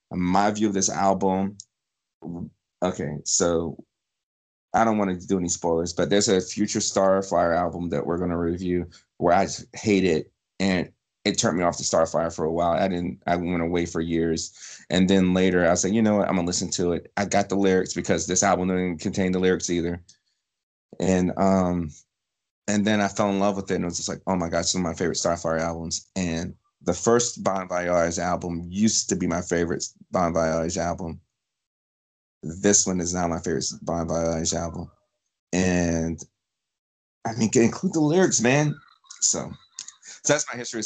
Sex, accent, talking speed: male, American, 195 wpm